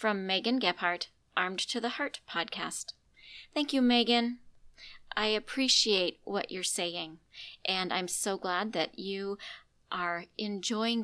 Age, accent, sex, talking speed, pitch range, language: 40-59, American, female, 130 wpm, 195-260 Hz, English